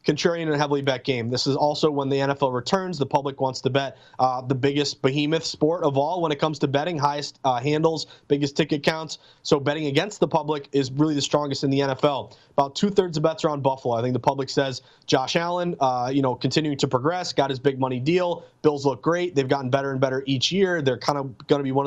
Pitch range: 140-170 Hz